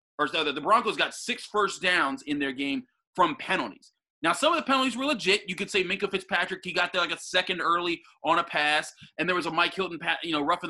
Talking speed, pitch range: 250 wpm, 165-240 Hz